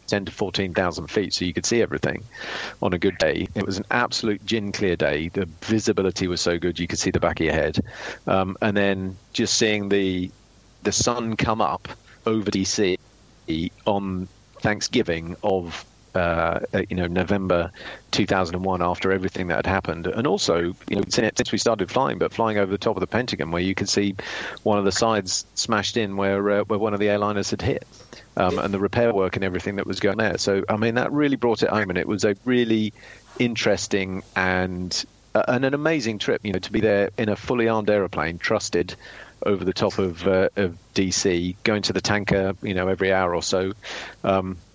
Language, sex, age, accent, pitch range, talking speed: English, male, 40-59, British, 95-105 Hz, 205 wpm